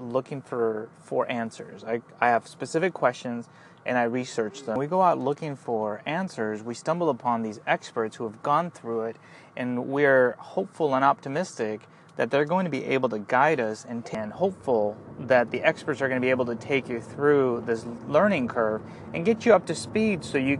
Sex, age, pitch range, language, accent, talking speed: male, 30-49, 115-155 Hz, English, American, 200 wpm